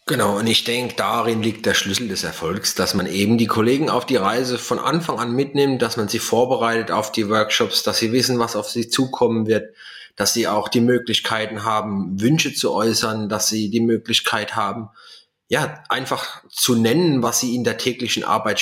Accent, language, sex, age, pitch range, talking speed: German, German, male, 30-49, 105-125 Hz, 195 wpm